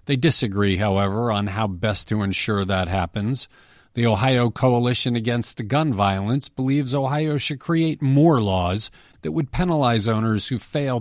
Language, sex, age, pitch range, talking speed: English, male, 40-59, 100-145 Hz, 155 wpm